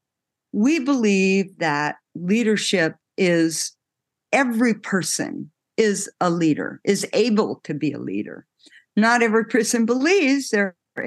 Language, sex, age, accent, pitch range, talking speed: English, female, 60-79, American, 155-220 Hz, 115 wpm